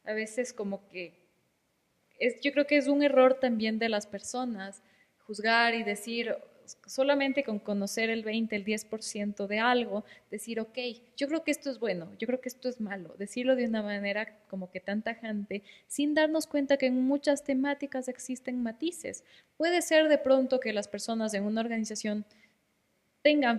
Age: 20-39